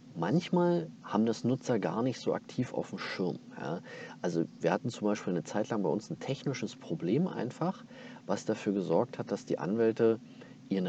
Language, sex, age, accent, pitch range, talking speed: German, male, 40-59, German, 95-135 Hz, 185 wpm